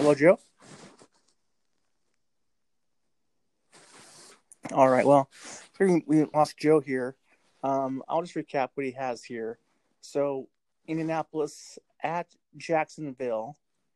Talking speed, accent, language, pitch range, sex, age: 90 wpm, American, English, 125-150 Hz, male, 30-49